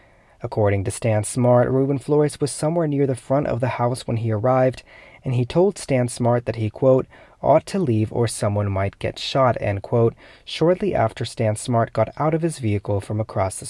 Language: English